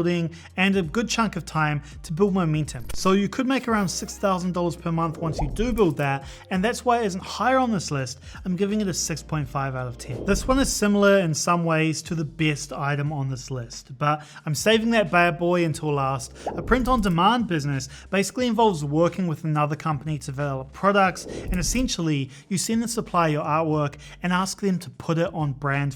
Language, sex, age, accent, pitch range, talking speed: English, male, 30-49, Australian, 150-195 Hz, 210 wpm